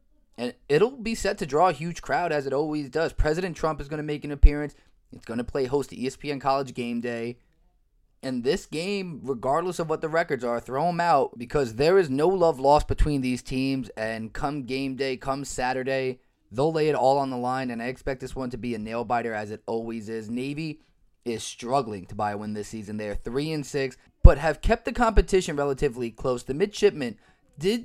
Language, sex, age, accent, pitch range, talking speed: English, male, 20-39, American, 120-155 Hz, 220 wpm